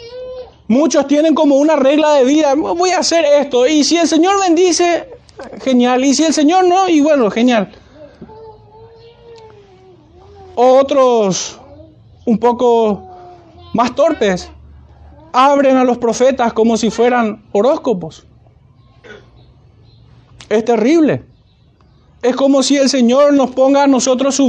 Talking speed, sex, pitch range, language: 125 wpm, male, 210-275 Hz, Spanish